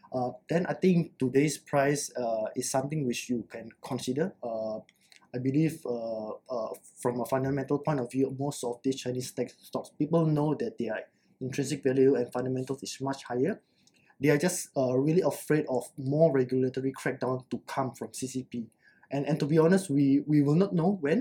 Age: 20-39